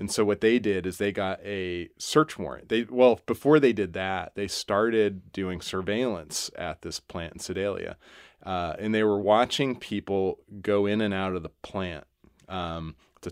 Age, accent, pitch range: 30-49, American, 90-105 Hz